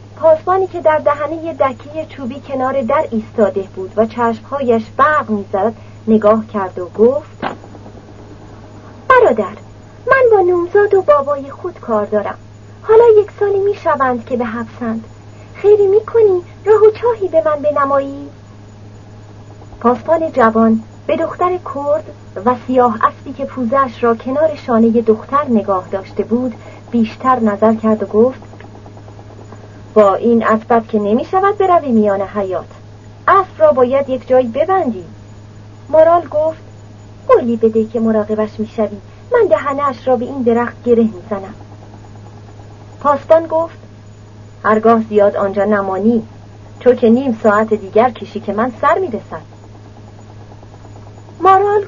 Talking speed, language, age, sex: 135 wpm, Persian, 40-59, female